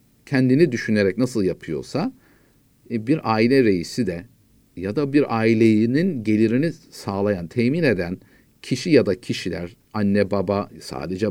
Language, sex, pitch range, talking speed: Turkish, male, 110-145 Hz, 120 wpm